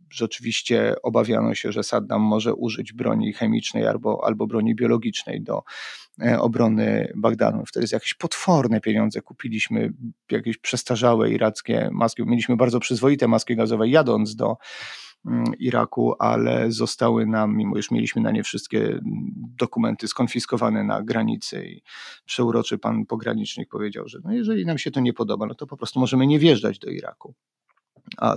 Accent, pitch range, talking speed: native, 115-135 Hz, 150 wpm